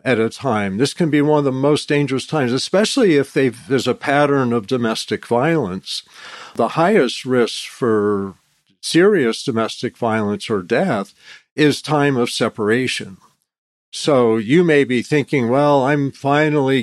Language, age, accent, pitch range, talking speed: English, 50-69, American, 110-145 Hz, 150 wpm